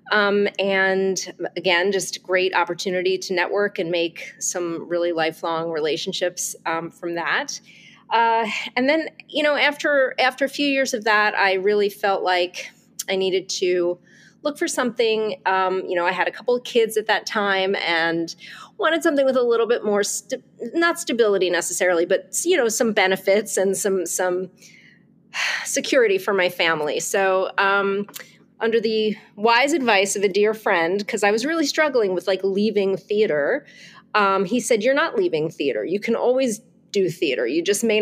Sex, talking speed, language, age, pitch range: female, 170 wpm, English, 30-49, 185-230 Hz